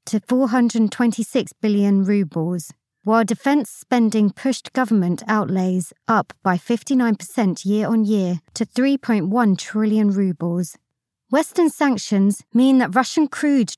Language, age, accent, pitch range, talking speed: English, 30-49, British, 190-245 Hz, 105 wpm